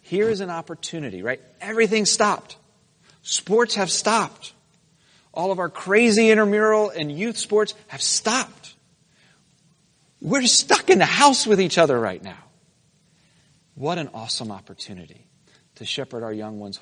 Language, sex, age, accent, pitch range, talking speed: English, male, 40-59, American, 125-175 Hz, 140 wpm